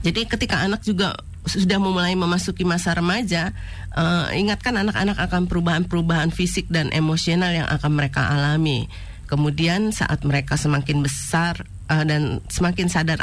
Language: Indonesian